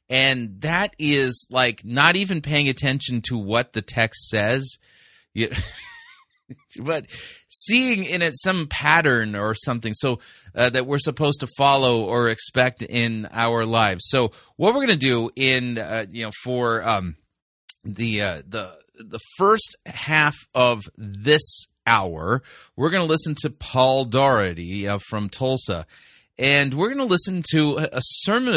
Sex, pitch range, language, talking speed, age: male, 120-155 Hz, English, 145 wpm, 30-49